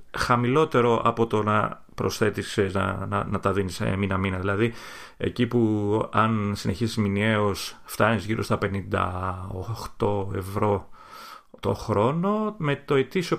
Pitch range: 100-120 Hz